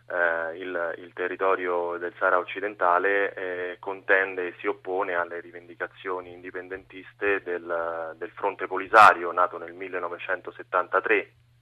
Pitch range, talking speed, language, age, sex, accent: 90-100 Hz, 115 wpm, Italian, 20-39, male, native